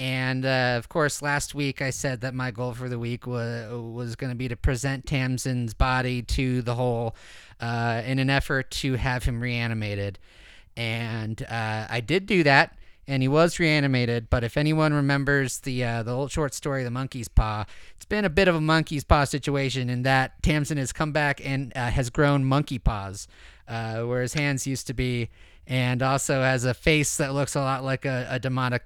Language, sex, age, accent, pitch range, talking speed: English, male, 30-49, American, 120-140 Hz, 205 wpm